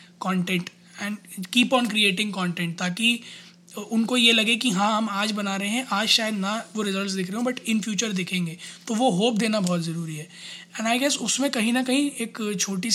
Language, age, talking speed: Hindi, 20-39, 210 wpm